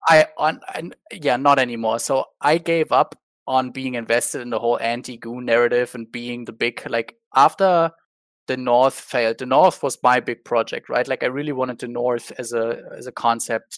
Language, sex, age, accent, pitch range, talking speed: English, male, 20-39, German, 120-140 Hz, 195 wpm